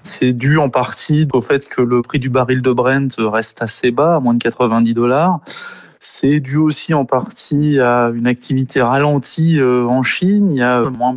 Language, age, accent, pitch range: French, 20-39, French, 115-145 Hz